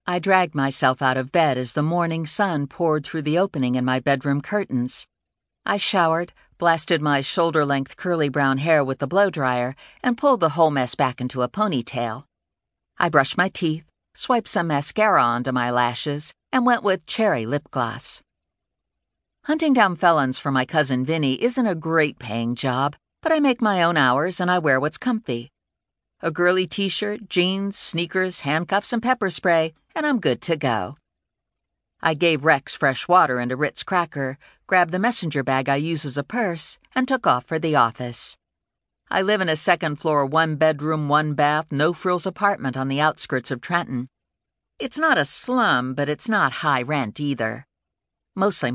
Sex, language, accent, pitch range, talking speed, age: female, English, American, 135-185 Hz, 175 wpm, 50-69